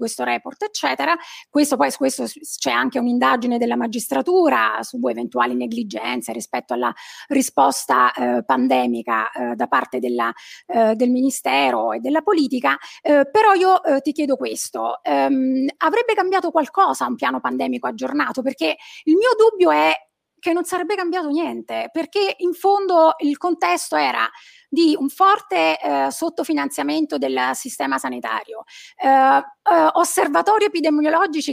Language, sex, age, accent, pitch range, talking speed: Italian, female, 30-49, native, 230-340 Hz, 140 wpm